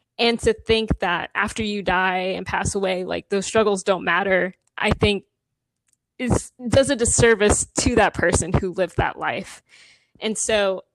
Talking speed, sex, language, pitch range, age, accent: 165 wpm, female, English, 190-225 Hz, 20-39, American